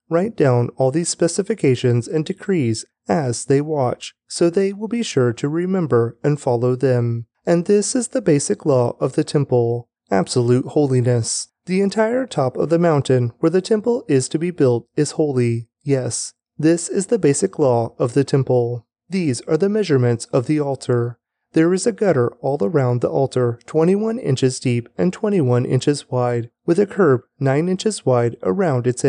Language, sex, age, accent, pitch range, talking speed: English, male, 30-49, American, 125-175 Hz, 175 wpm